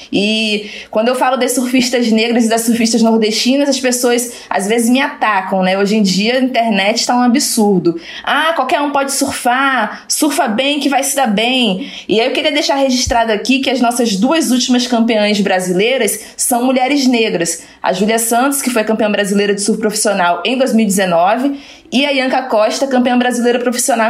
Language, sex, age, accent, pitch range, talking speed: Portuguese, female, 20-39, Brazilian, 210-260 Hz, 185 wpm